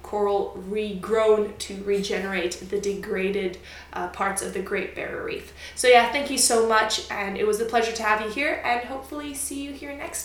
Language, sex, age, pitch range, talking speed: English, female, 20-39, 205-250 Hz, 200 wpm